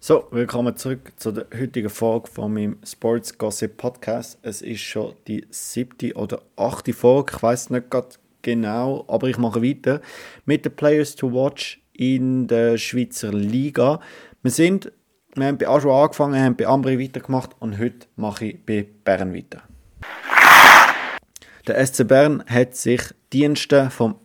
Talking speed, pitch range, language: 150 wpm, 115-135 Hz, German